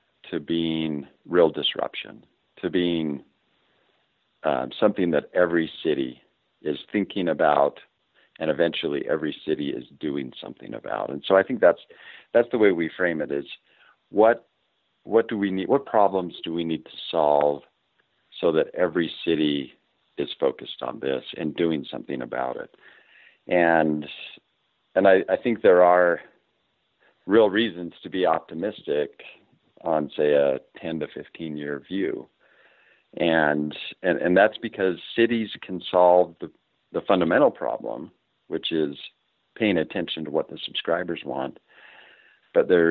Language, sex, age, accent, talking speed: English, male, 50-69, American, 145 wpm